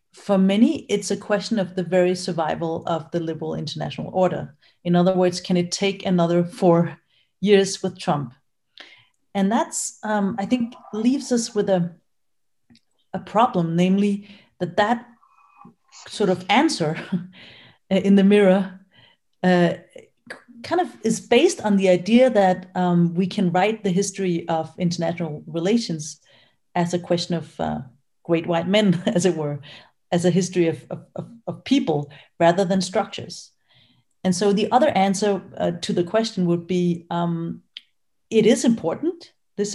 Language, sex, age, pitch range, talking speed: English, female, 40-59, 170-210 Hz, 150 wpm